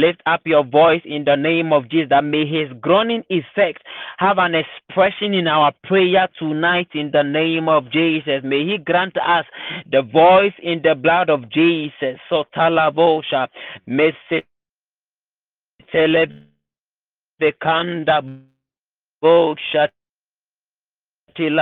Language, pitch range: English, 135-165 Hz